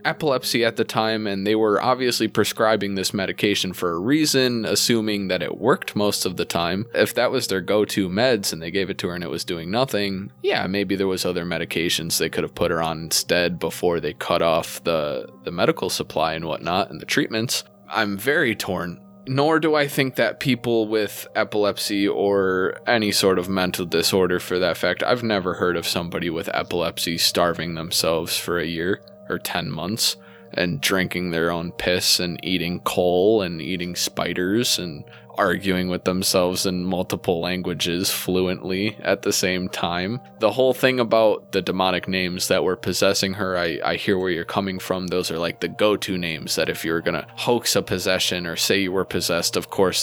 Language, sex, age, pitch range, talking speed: English, male, 20-39, 90-110 Hz, 195 wpm